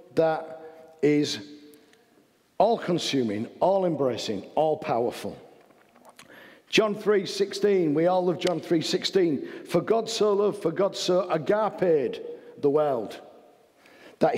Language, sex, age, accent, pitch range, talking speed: English, male, 50-69, British, 125-180 Hz, 95 wpm